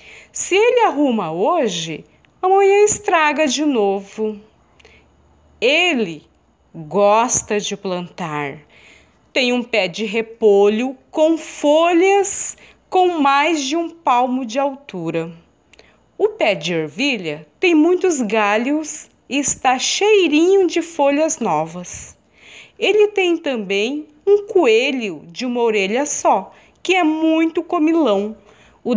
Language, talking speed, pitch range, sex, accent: Portuguese, 110 wpm, 205-330 Hz, female, Brazilian